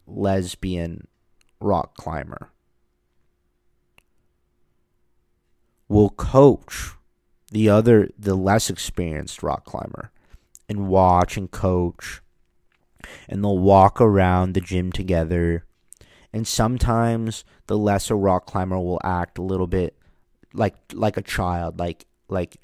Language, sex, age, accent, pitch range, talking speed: English, male, 30-49, American, 85-110 Hz, 105 wpm